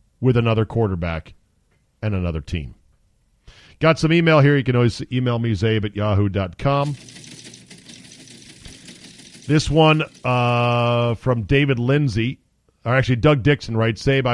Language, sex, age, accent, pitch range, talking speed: English, male, 40-59, American, 105-135 Hz, 125 wpm